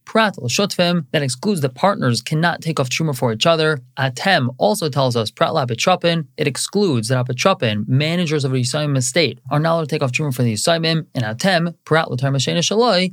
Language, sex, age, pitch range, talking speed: English, male, 20-39, 125-170 Hz, 190 wpm